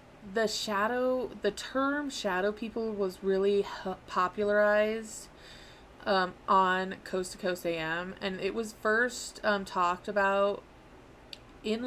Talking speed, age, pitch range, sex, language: 115 wpm, 20-39, 185-210 Hz, female, English